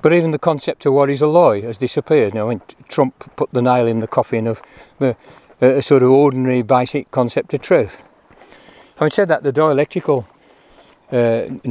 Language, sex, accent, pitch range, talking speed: English, male, British, 125-145 Hz, 180 wpm